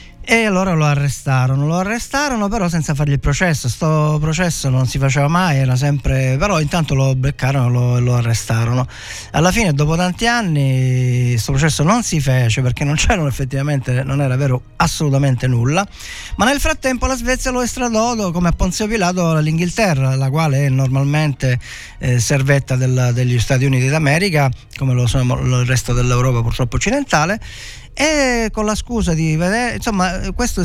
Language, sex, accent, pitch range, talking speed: Italian, male, native, 120-175 Hz, 165 wpm